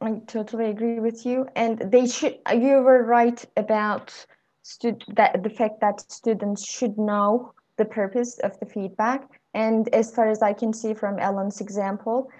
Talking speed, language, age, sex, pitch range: 170 wpm, English, 20-39, female, 195-230 Hz